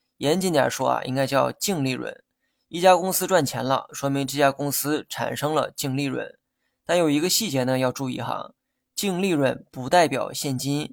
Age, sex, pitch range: 20-39, male, 130-160 Hz